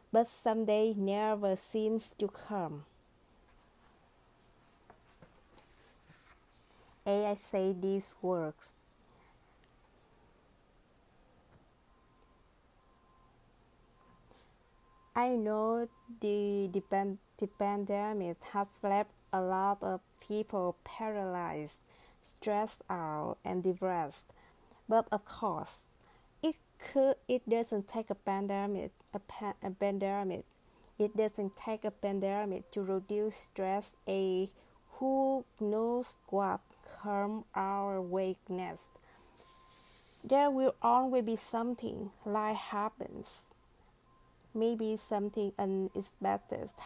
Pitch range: 195-220 Hz